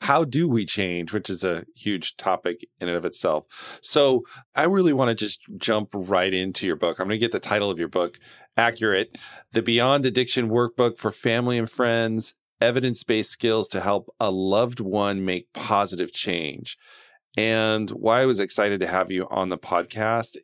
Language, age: English, 40-59